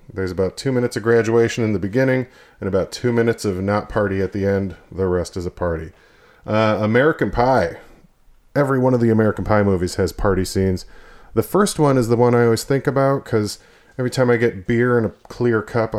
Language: English